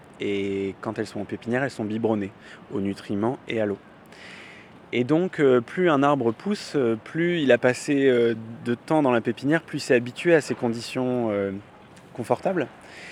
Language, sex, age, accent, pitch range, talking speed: French, male, 20-39, French, 105-135 Hz, 170 wpm